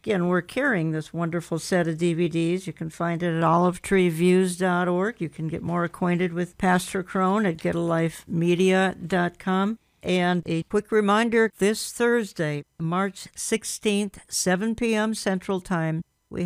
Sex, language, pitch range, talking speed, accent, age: female, English, 175-200 Hz, 135 wpm, American, 60-79